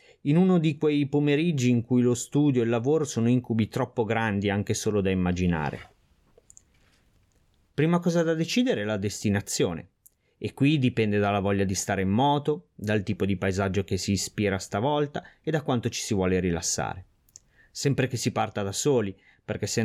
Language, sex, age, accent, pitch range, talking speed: Italian, male, 30-49, native, 100-125 Hz, 180 wpm